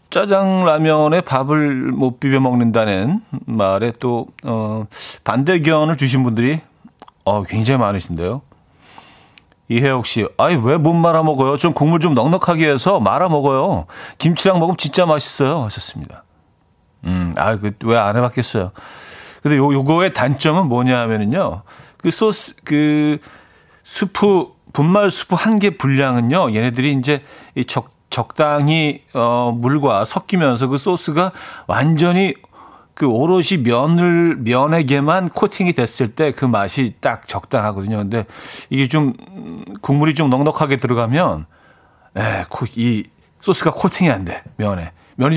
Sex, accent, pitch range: male, native, 120-170 Hz